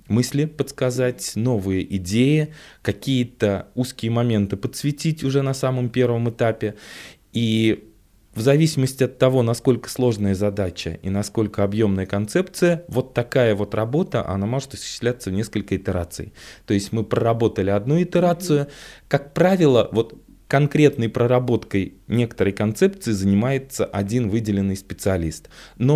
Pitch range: 95-130 Hz